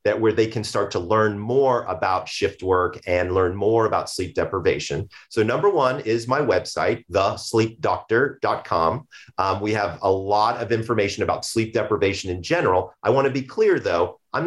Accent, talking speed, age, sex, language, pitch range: American, 180 wpm, 40-59, male, English, 105-140 Hz